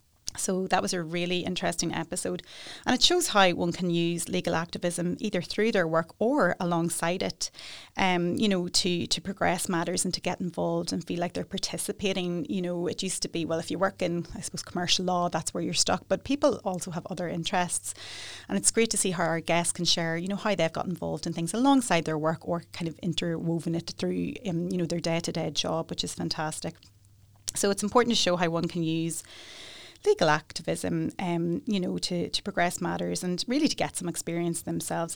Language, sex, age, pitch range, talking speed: English, female, 30-49, 165-190 Hz, 215 wpm